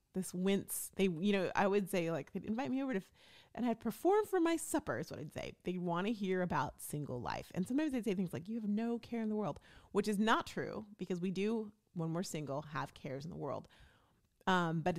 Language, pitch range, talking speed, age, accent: English, 155-195 Hz, 250 wpm, 30-49, American